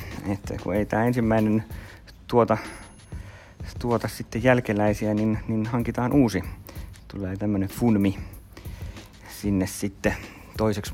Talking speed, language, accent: 105 wpm, Finnish, native